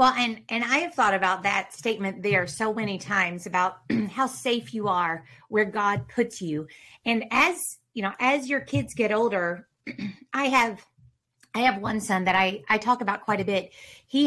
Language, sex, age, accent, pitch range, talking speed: English, female, 30-49, American, 200-265 Hz, 195 wpm